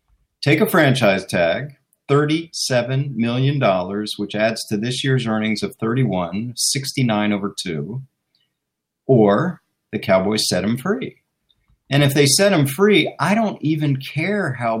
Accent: American